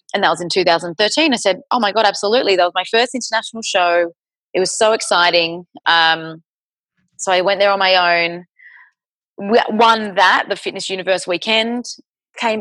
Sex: female